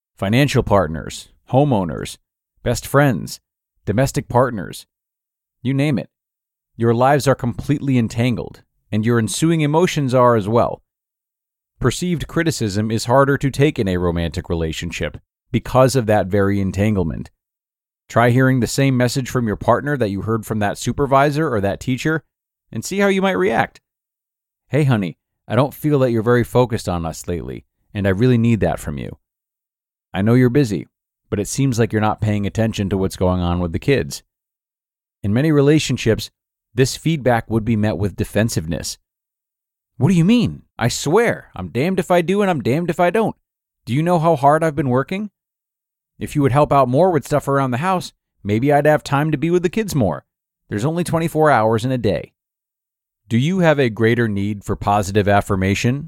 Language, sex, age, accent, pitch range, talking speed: English, male, 40-59, American, 100-140 Hz, 180 wpm